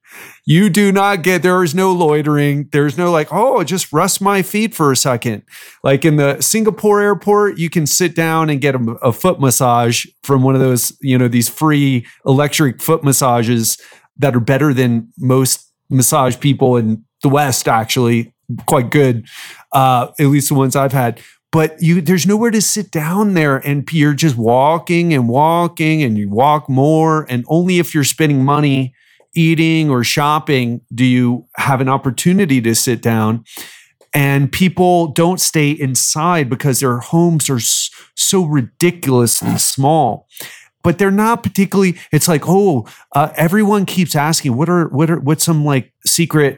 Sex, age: male, 30-49